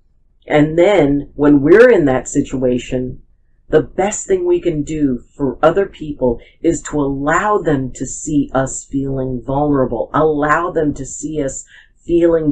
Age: 50-69